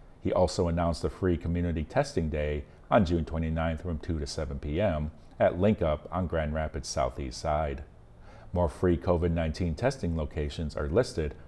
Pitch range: 75-85 Hz